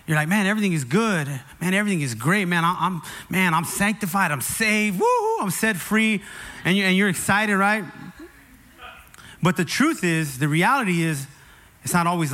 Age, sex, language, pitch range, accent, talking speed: 30-49, male, English, 145-195 Hz, American, 185 wpm